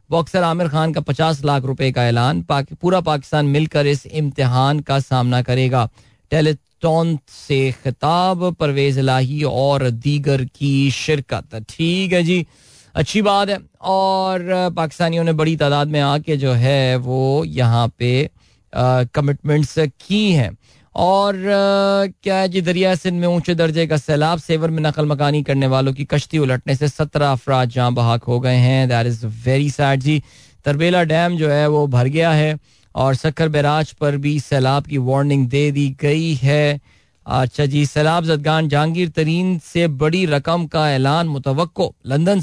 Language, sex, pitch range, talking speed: Hindi, male, 135-165 Hz, 160 wpm